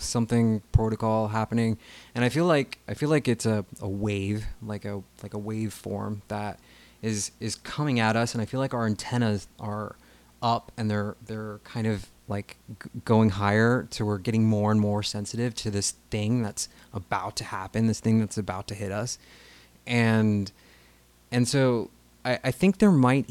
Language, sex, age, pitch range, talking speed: English, male, 20-39, 105-120 Hz, 185 wpm